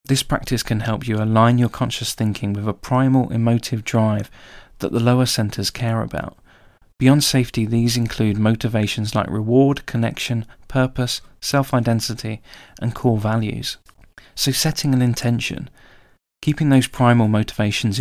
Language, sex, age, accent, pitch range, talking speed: English, male, 20-39, British, 105-125 Hz, 135 wpm